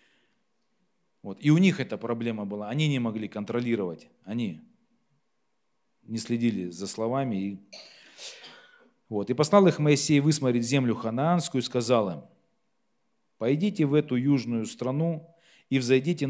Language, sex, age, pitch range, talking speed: Russian, male, 40-59, 115-150 Hz, 120 wpm